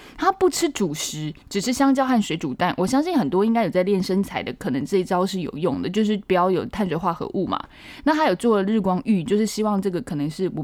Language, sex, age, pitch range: Chinese, female, 20-39, 175-230 Hz